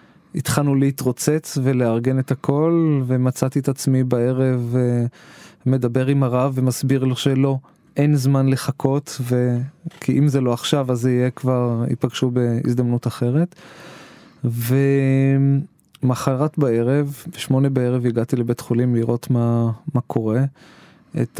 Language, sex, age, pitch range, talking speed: Hebrew, male, 20-39, 125-140 Hz, 120 wpm